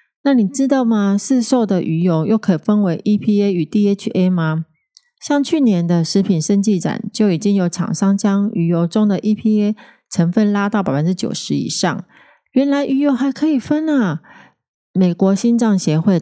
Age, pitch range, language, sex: 30-49, 165-210 Hz, Chinese, female